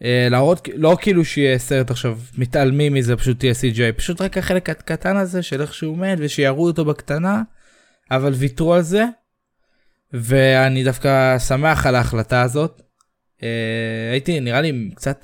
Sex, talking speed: male, 160 wpm